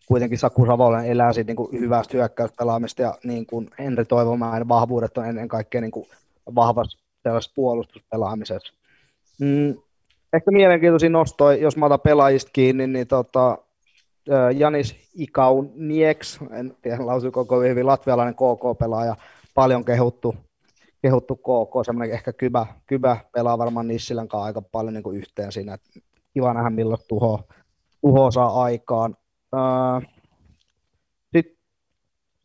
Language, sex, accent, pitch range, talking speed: Finnish, male, native, 115-130 Hz, 130 wpm